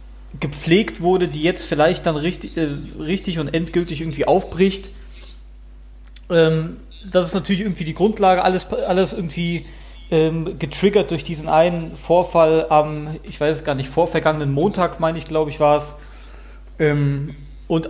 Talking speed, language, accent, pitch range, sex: 145 wpm, German, German, 135-160 Hz, male